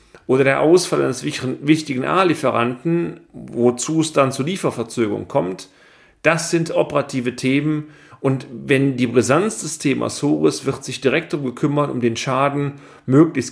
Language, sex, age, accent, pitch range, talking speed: German, male, 40-59, German, 120-150 Hz, 145 wpm